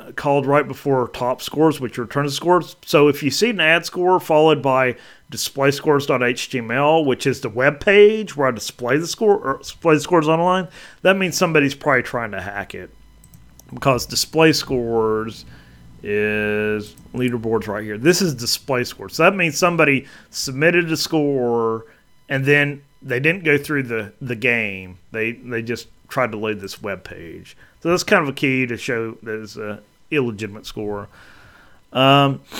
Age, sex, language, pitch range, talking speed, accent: 30-49, male, English, 110-155 Hz, 165 wpm, American